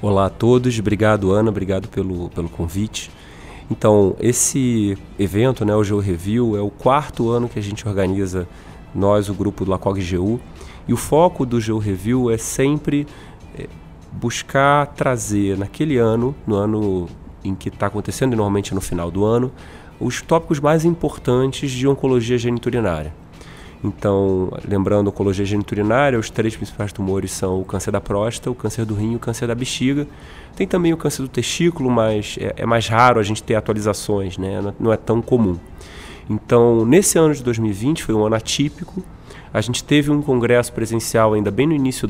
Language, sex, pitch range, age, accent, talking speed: Portuguese, male, 100-125 Hz, 30-49, Brazilian, 170 wpm